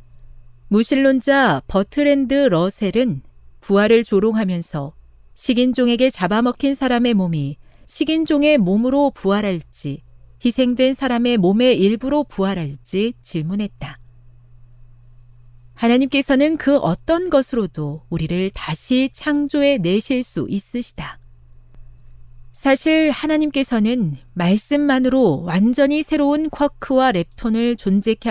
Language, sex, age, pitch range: Korean, female, 40-59, 155-260 Hz